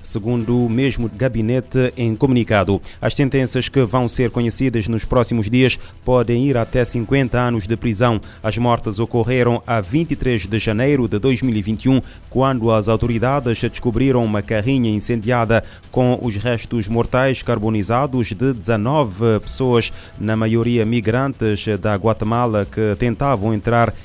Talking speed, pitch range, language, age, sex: 135 wpm, 105-125 Hz, Portuguese, 30-49, male